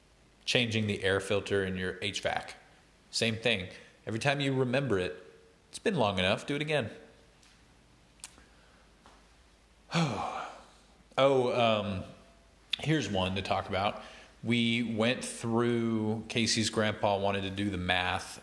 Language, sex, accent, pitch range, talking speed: English, male, American, 95-115 Hz, 125 wpm